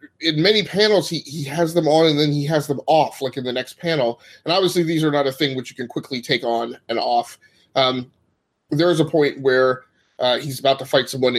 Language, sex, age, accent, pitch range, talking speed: English, male, 20-39, American, 120-145 Hz, 240 wpm